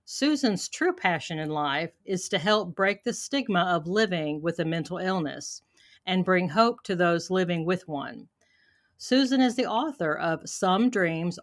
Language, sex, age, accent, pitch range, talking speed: English, female, 50-69, American, 170-225 Hz, 170 wpm